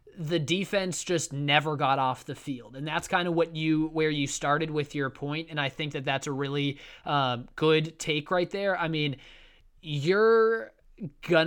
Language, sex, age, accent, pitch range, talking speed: English, male, 20-39, American, 145-175 Hz, 190 wpm